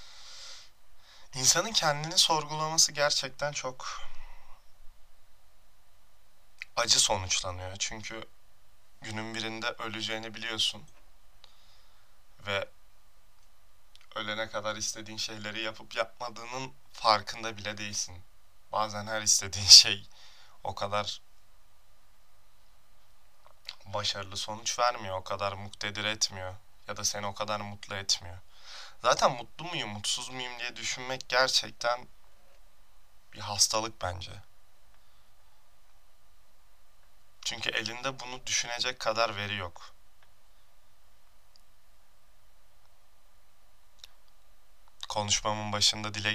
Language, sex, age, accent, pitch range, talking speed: Turkish, male, 30-49, native, 100-110 Hz, 80 wpm